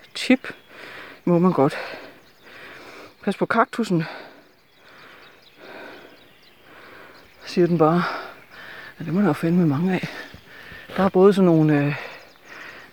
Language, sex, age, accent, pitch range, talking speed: Danish, female, 60-79, native, 165-215 Hz, 115 wpm